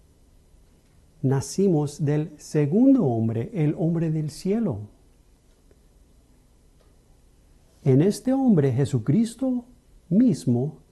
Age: 50-69